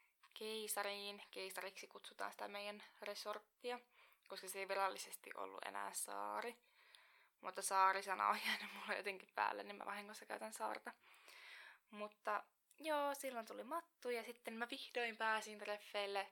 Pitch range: 200-240 Hz